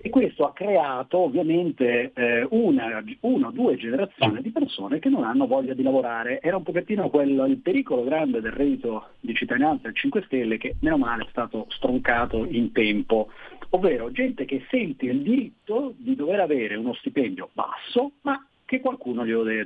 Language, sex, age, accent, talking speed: Italian, male, 40-59, native, 175 wpm